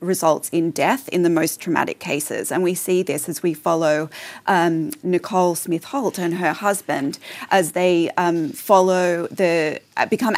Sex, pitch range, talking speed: female, 165-190 Hz, 170 wpm